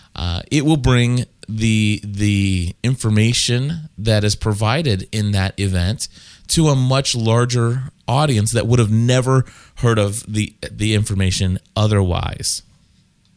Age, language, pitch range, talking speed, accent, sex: 20-39, English, 95-130 Hz, 125 wpm, American, male